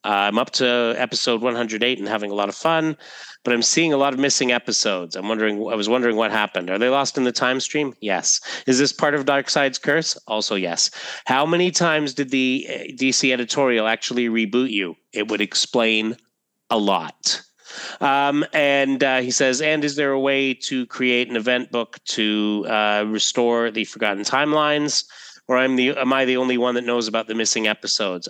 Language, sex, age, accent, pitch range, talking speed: English, male, 30-49, American, 110-140 Hz, 195 wpm